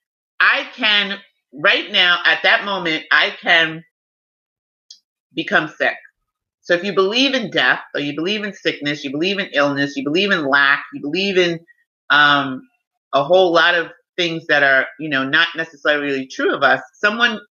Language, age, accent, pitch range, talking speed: English, 30-49, American, 150-215 Hz, 170 wpm